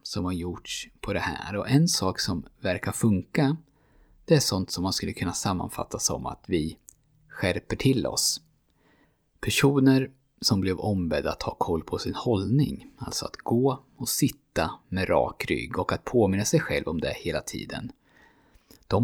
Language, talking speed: Swedish, 170 wpm